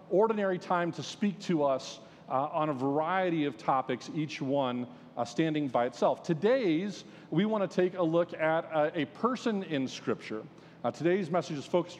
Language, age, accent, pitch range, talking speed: English, 40-59, American, 145-190 Hz, 180 wpm